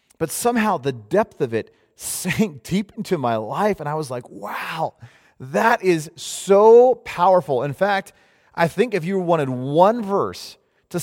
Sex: male